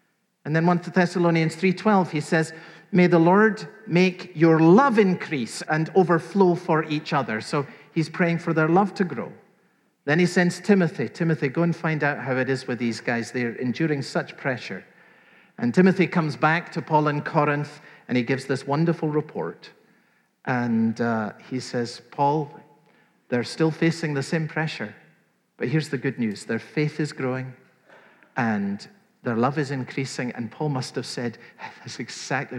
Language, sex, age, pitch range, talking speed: English, male, 50-69, 135-195 Hz, 170 wpm